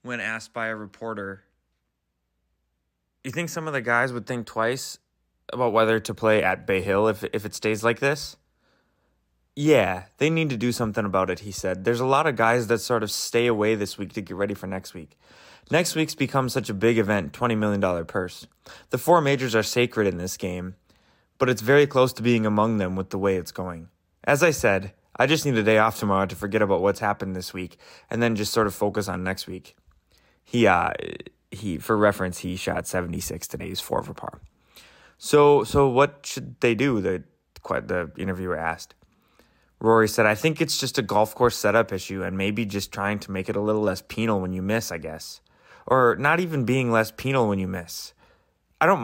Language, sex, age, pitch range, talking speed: English, male, 20-39, 95-120 Hz, 210 wpm